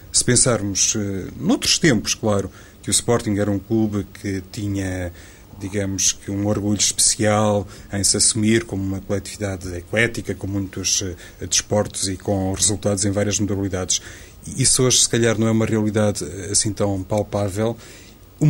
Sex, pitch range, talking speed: male, 100-115 Hz, 145 wpm